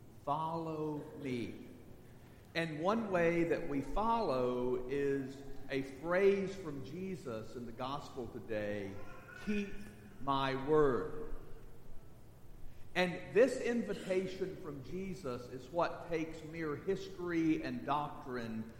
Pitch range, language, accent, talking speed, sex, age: 125-175 Hz, English, American, 100 wpm, male, 50-69